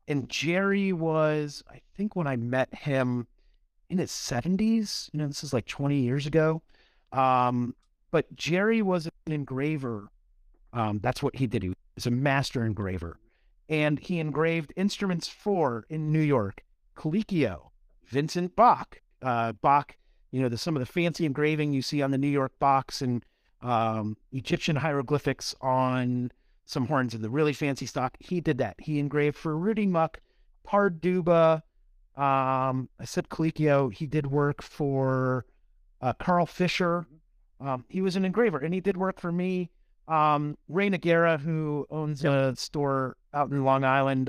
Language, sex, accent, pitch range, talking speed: English, male, American, 130-165 Hz, 160 wpm